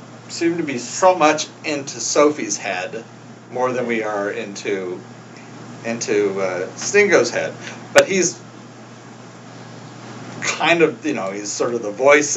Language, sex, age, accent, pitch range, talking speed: English, male, 40-59, American, 105-145 Hz, 135 wpm